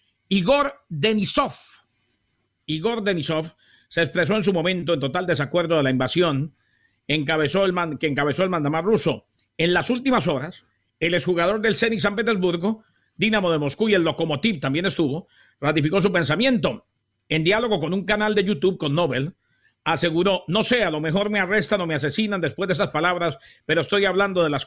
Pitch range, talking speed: 140-195 Hz, 180 wpm